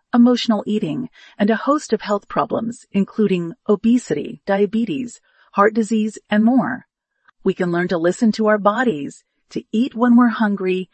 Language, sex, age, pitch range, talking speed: English, female, 40-59, 195-240 Hz, 155 wpm